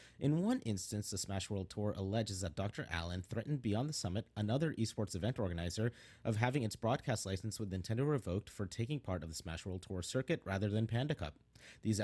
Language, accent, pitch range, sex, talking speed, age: English, American, 95-125 Hz, male, 205 wpm, 30-49